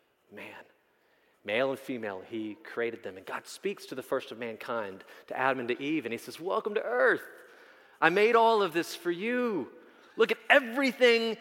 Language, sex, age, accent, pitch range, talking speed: English, male, 30-49, American, 150-225 Hz, 190 wpm